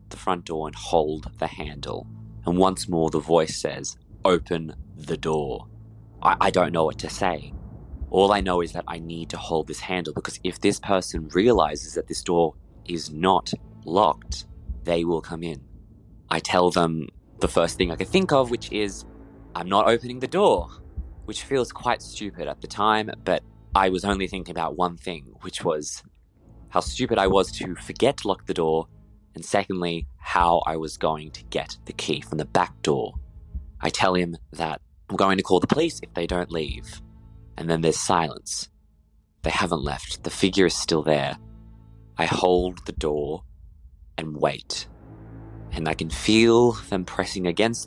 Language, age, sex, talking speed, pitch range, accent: English, 20-39, male, 185 wpm, 80-100 Hz, Australian